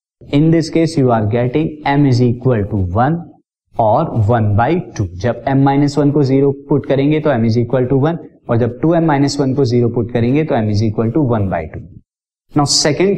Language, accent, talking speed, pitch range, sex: Hindi, native, 225 wpm, 115-145 Hz, male